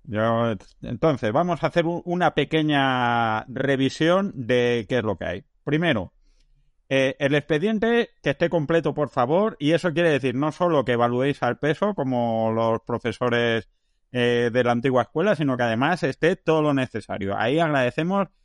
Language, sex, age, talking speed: Spanish, male, 30-49, 160 wpm